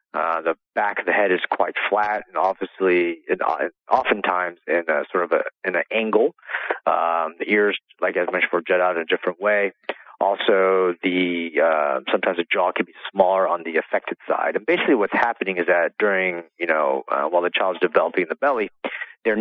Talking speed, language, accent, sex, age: 200 wpm, English, American, male, 40-59